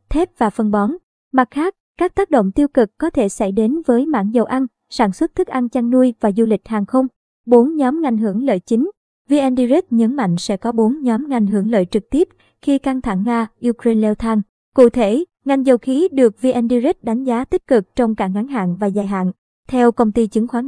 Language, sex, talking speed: Vietnamese, male, 225 wpm